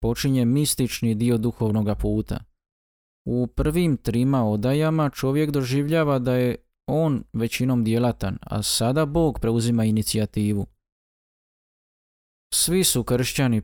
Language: Croatian